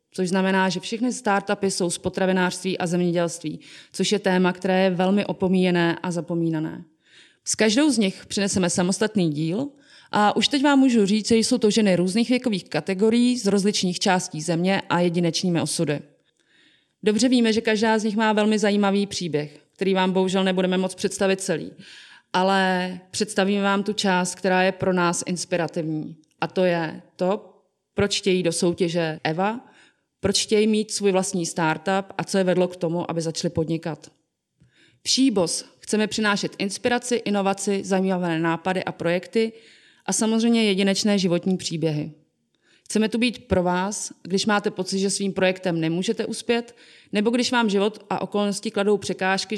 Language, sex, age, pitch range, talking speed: Czech, female, 30-49, 175-205 Hz, 160 wpm